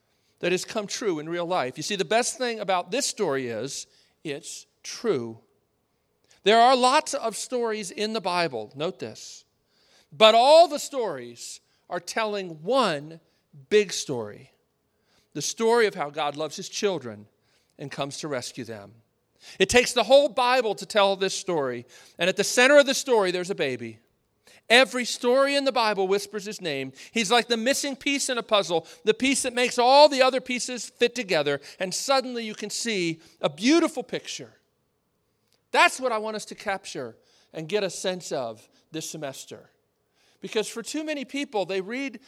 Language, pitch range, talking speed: English, 170-245 Hz, 175 wpm